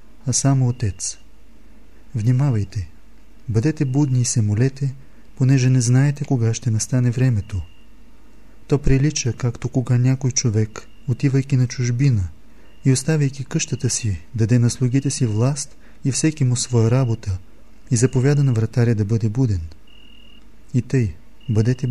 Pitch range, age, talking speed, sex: 105-135 Hz, 40-59, 135 wpm, male